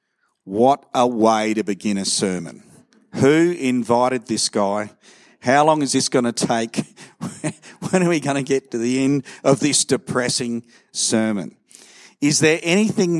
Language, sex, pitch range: English, male, 110-140 Hz